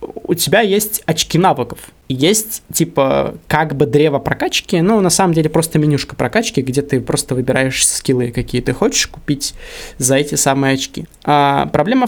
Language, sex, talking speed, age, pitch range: Russian, male, 160 wpm, 20-39, 135-170 Hz